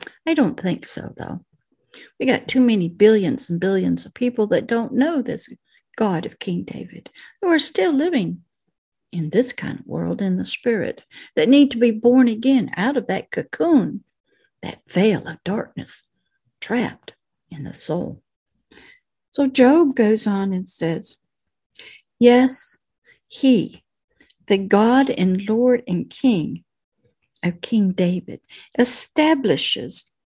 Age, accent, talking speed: 60-79, American, 140 wpm